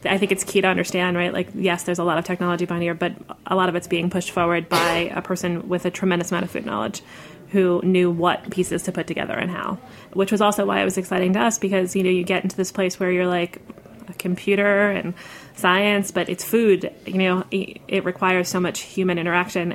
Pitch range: 175-195 Hz